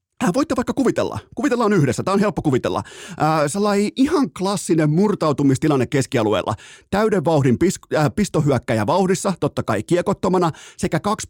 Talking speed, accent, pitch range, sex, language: 145 wpm, native, 135-190 Hz, male, Finnish